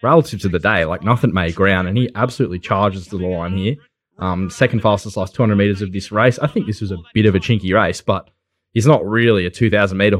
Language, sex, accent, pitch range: English, male, Australian, 95-110 Hz